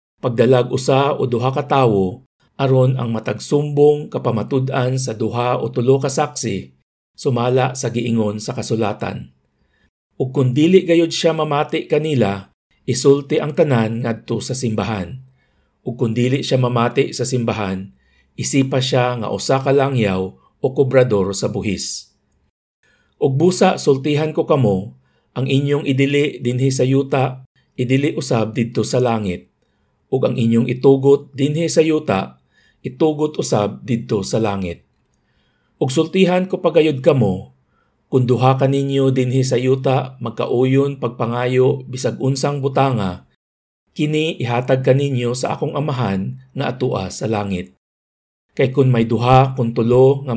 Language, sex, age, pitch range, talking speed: Filipino, male, 50-69, 110-140 Hz, 125 wpm